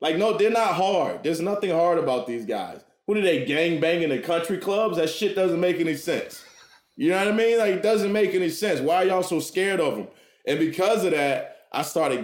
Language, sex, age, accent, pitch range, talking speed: English, male, 20-39, American, 120-170 Hz, 240 wpm